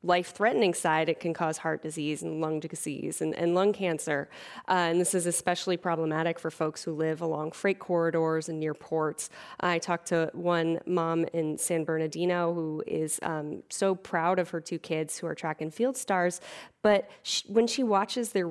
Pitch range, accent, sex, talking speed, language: 160-190 Hz, American, female, 190 wpm, English